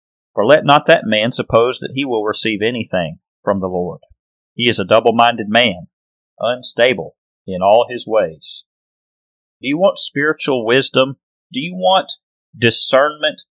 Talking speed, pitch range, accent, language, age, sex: 145 wpm, 115-160 Hz, American, English, 40-59, male